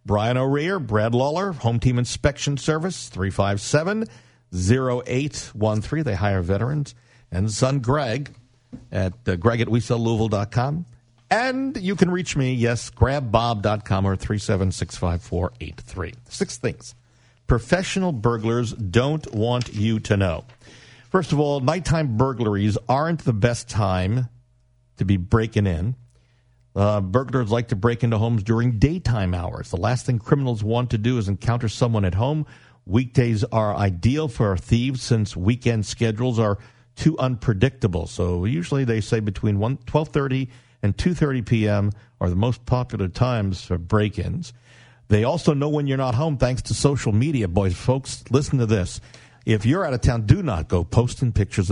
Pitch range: 105-130 Hz